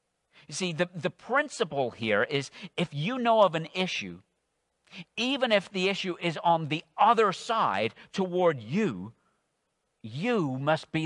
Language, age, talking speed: English, 50-69, 145 wpm